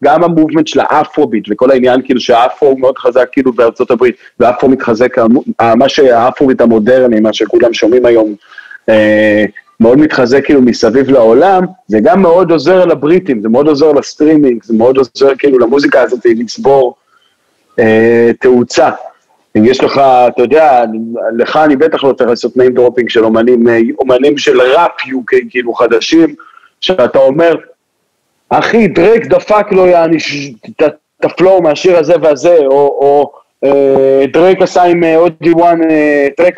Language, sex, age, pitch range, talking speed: Hebrew, male, 40-59, 130-190 Hz, 145 wpm